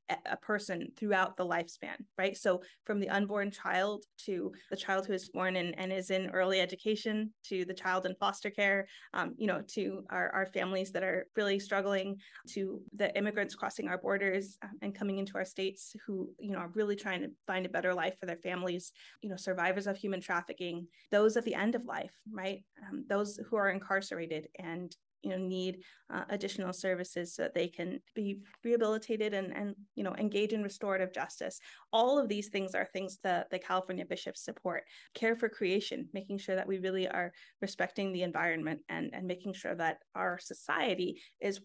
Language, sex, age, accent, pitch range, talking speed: English, female, 20-39, American, 185-210 Hz, 195 wpm